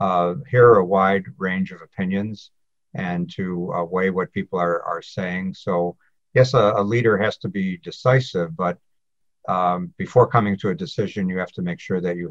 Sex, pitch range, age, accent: male, 85-130 Hz, 60-79, American